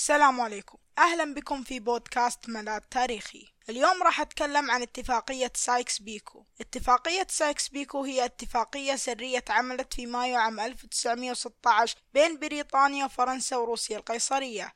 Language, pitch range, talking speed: Arabic, 235-275 Hz, 125 wpm